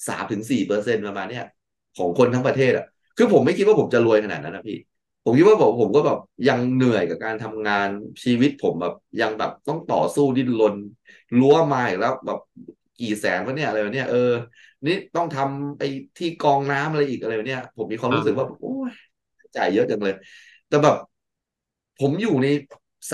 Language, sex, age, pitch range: Thai, male, 20-39, 110-145 Hz